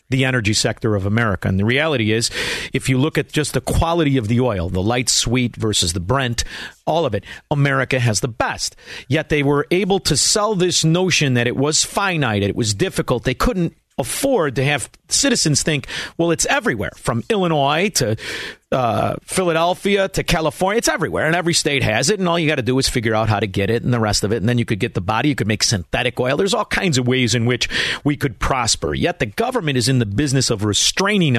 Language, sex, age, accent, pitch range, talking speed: English, male, 50-69, American, 115-155 Hz, 230 wpm